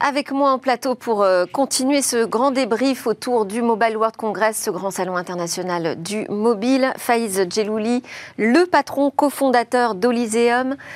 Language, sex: French, female